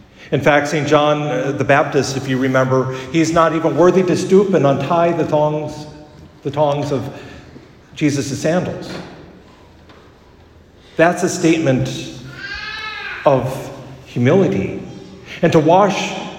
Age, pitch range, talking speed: 50-69, 130-170 Hz, 115 wpm